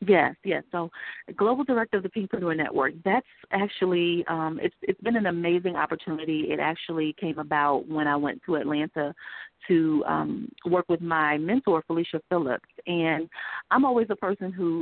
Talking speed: 170 wpm